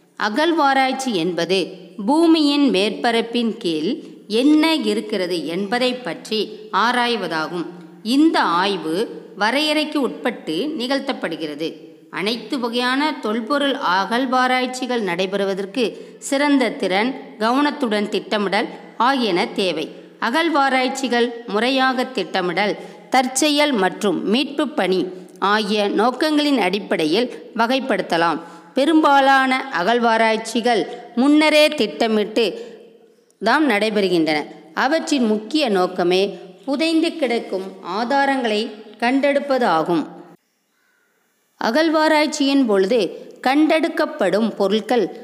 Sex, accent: female, native